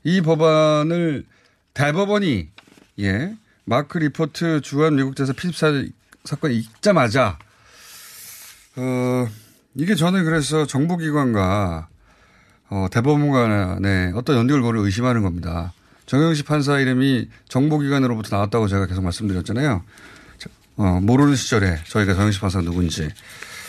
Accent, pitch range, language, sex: native, 100-155 Hz, Korean, male